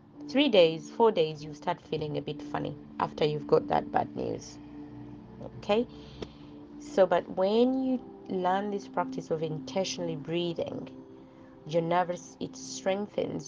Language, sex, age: English, female, 30-49